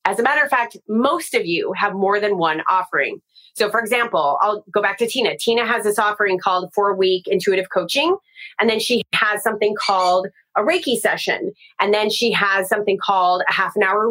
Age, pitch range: 30-49, 195-265 Hz